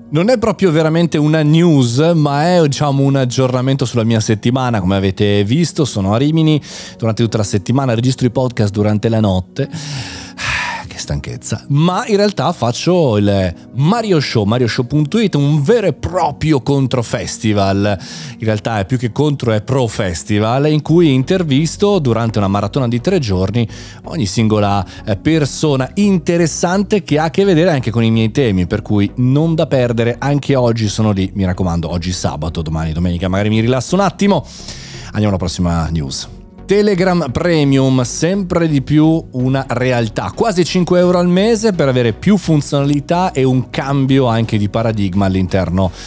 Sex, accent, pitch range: male, native, 105-155 Hz